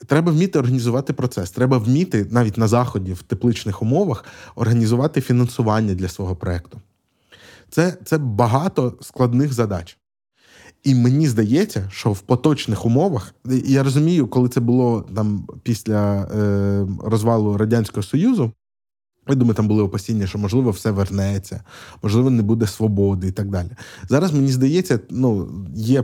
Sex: male